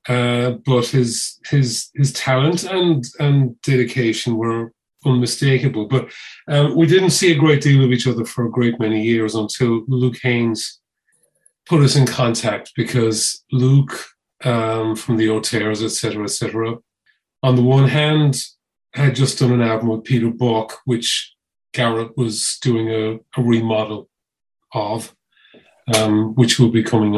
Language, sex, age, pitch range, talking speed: English, male, 40-59, 110-130 Hz, 150 wpm